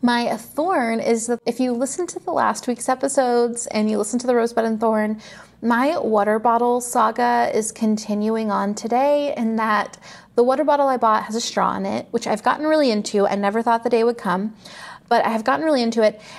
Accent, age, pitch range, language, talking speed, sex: American, 30-49, 210-260 Hz, English, 215 wpm, female